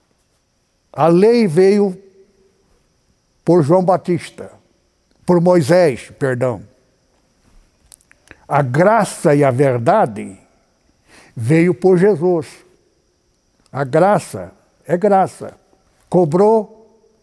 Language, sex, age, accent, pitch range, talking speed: Portuguese, male, 60-79, Brazilian, 160-210 Hz, 75 wpm